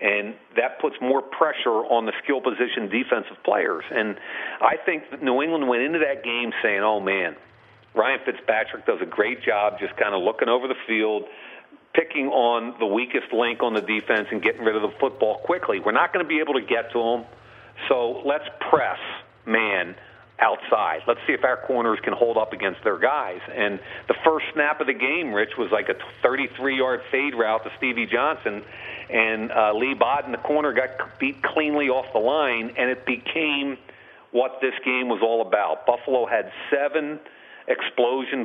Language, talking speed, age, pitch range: English, 190 wpm, 40-59, 115-145 Hz